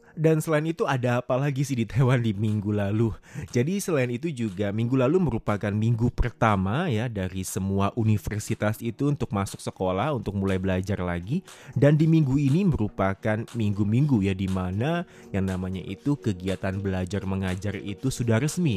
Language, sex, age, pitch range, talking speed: Indonesian, male, 20-39, 100-130 Hz, 165 wpm